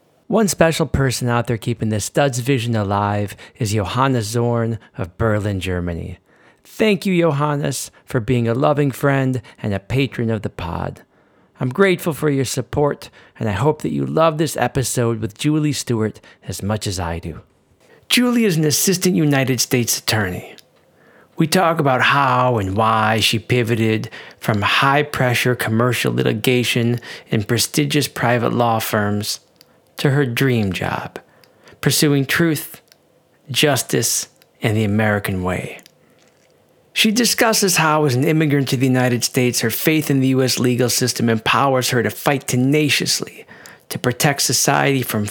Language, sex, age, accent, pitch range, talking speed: English, male, 40-59, American, 110-150 Hz, 150 wpm